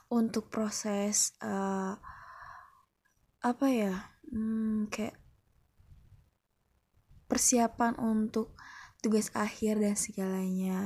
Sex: female